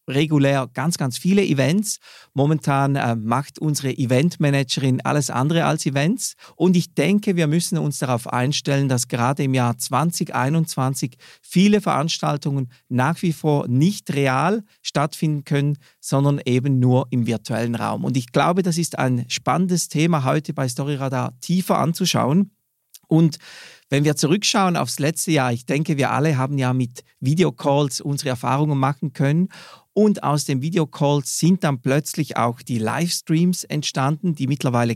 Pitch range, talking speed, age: 130-165 Hz, 150 wpm, 40-59